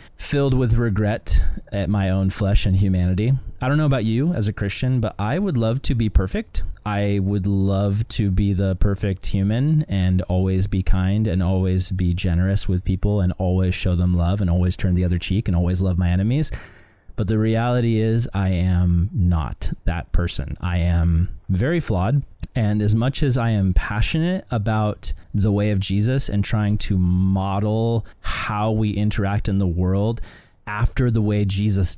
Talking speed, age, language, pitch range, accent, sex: 180 wpm, 20-39, English, 95-115 Hz, American, male